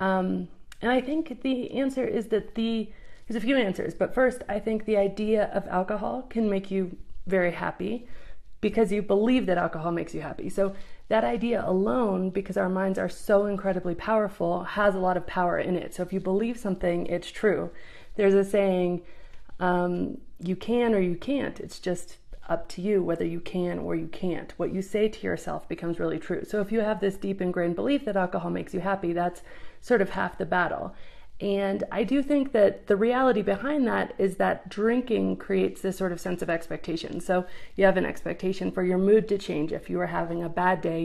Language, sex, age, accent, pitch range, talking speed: English, female, 30-49, American, 180-215 Hz, 210 wpm